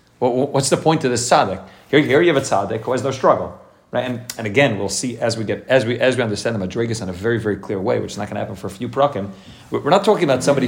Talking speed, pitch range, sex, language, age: 300 wpm, 110-140 Hz, male, English, 40-59